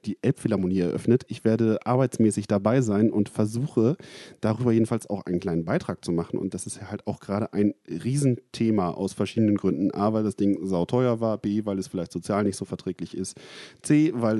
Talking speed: 190 wpm